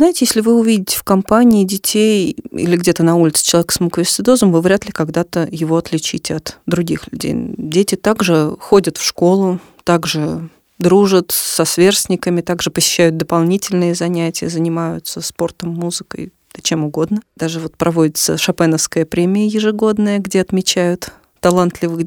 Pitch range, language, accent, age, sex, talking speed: 165-205 Hz, Russian, native, 30-49, female, 135 wpm